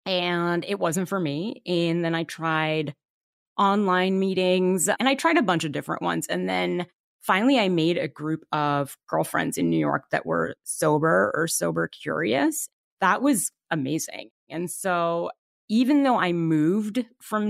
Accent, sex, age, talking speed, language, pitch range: American, female, 30-49, 160 wpm, English, 160-205 Hz